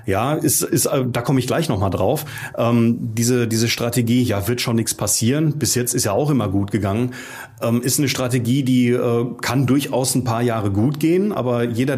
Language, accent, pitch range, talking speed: German, German, 115-130 Hz, 180 wpm